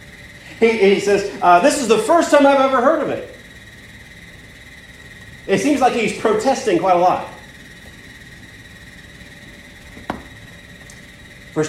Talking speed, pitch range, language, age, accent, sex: 115 wpm, 140-205 Hz, English, 40-59, American, male